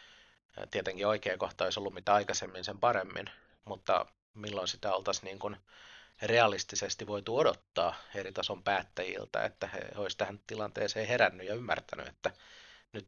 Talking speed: 140 wpm